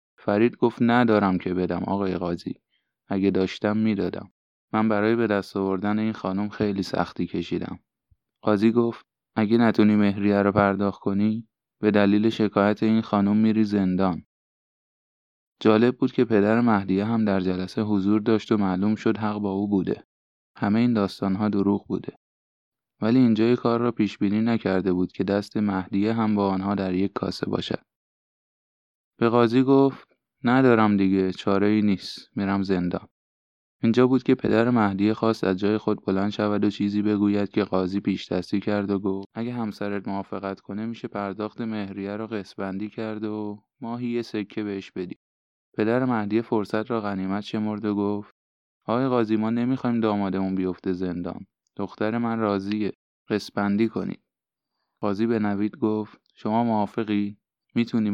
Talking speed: 150 wpm